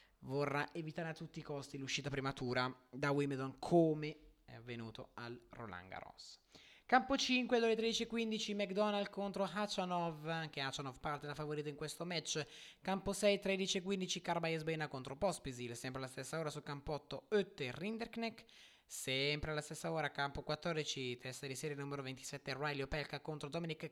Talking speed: 155 wpm